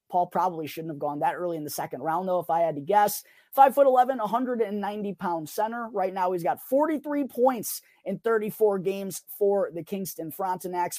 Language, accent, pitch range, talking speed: English, American, 165-215 Hz, 190 wpm